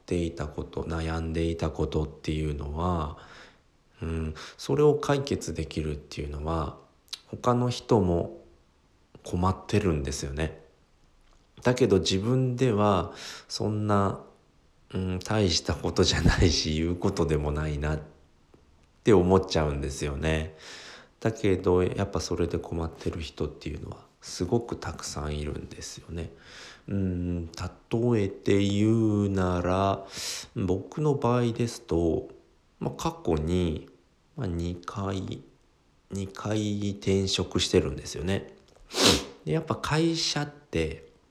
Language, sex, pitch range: Japanese, male, 75-105 Hz